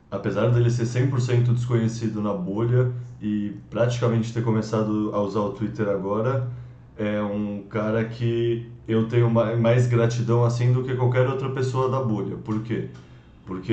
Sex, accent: male, Brazilian